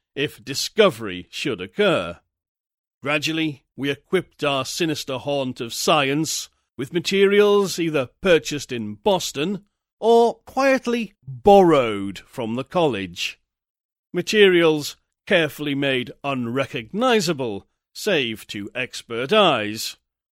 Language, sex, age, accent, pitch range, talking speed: English, male, 40-59, British, 125-200 Hz, 95 wpm